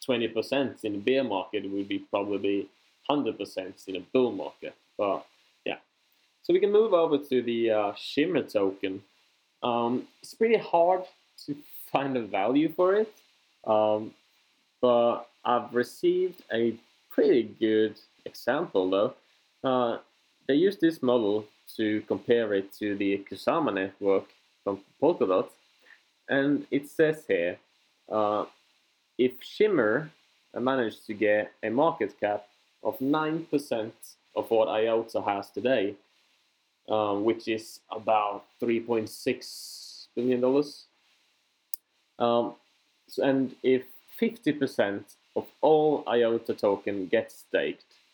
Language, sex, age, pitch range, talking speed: English, male, 20-39, 105-135 Hz, 120 wpm